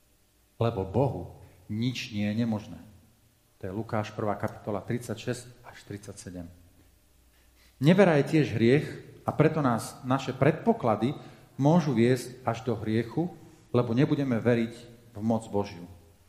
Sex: male